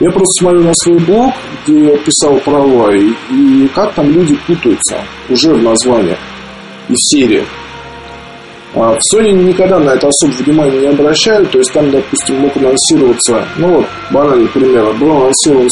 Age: 20-39